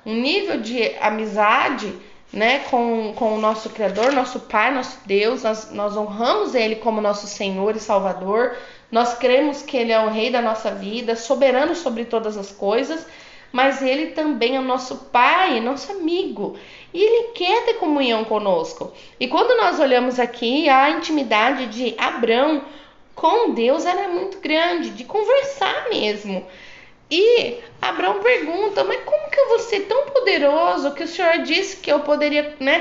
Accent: Brazilian